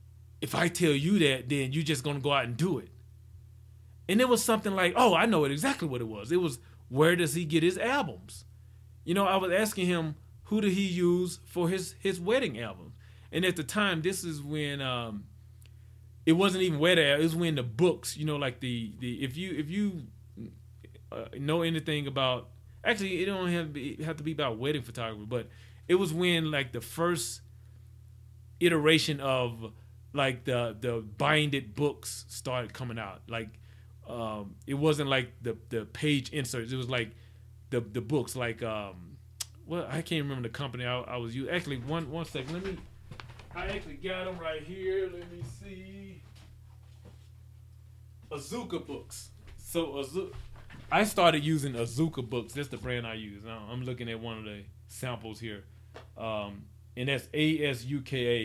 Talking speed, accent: 185 wpm, American